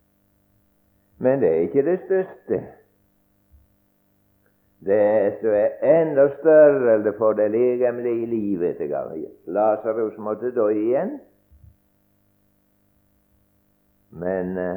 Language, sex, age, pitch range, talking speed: English, male, 60-79, 100-110 Hz, 95 wpm